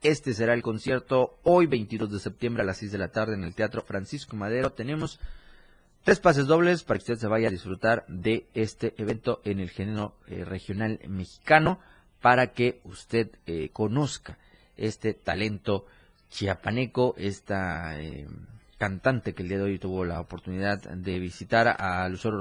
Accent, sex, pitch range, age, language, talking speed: Mexican, male, 95-120 Hz, 30-49, Spanish, 165 wpm